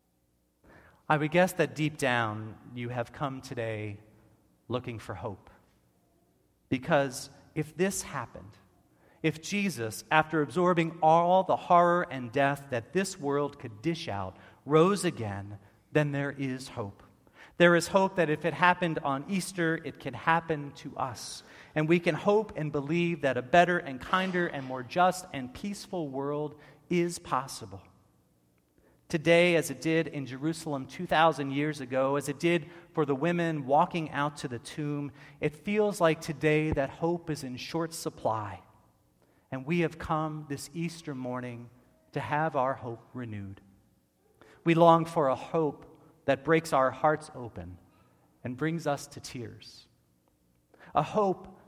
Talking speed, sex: 150 wpm, male